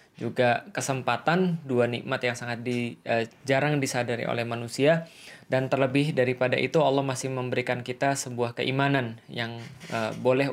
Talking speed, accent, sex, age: 140 wpm, native, male, 20-39